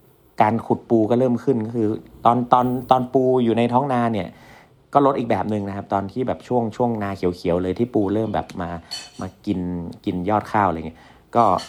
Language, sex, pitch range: Thai, male, 95-120 Hz